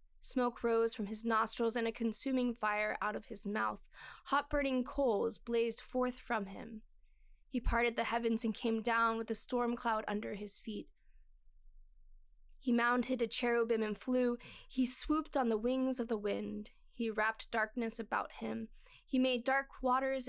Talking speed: 170 wpm